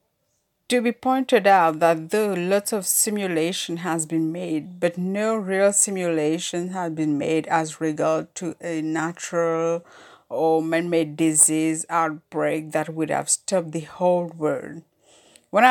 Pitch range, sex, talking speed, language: 160-200 Hz, female, 140 wpm, English